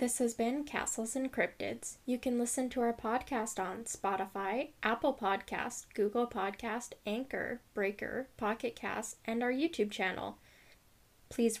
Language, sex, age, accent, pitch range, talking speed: English, female, 10-29, American, 215-260 Hz, 140 wpm